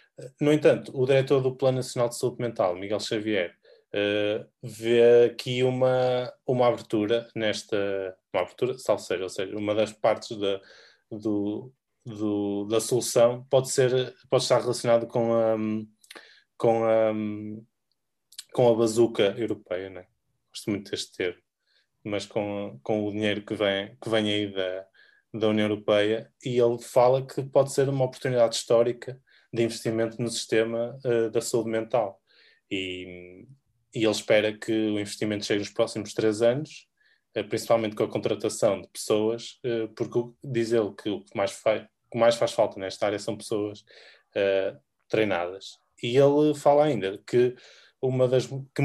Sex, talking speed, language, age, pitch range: male, 160 wpm, Portuguese, 20-39, 105-125 Hz